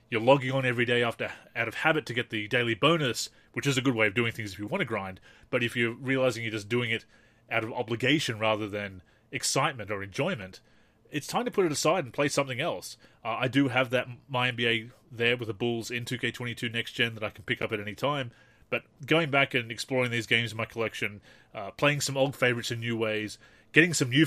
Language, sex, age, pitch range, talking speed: English, male, 30-49, 110-135 Hz, 240 wpm